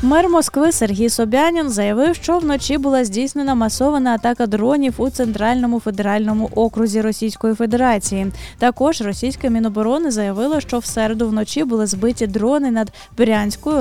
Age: 20-39